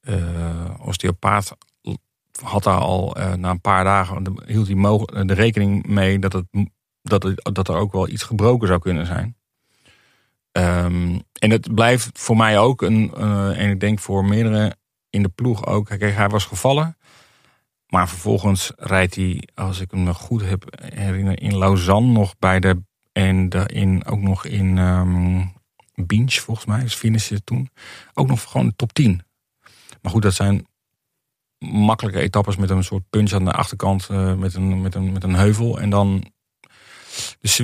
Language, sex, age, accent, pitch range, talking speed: Dutch, male, 40-59, Dutch, 95-110 Hz, 175 wpm